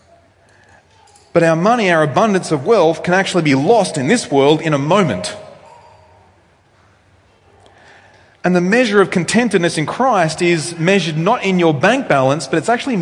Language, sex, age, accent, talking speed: English, male, 30-49, Australian, 155 wpm